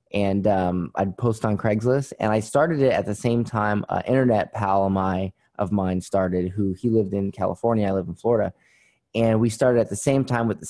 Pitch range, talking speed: 110-135 Hz, 215 wpm